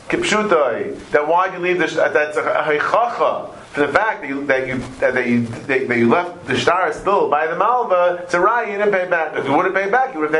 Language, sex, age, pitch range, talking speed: English, male, 40-59, 160-220 Hz, 265 wpm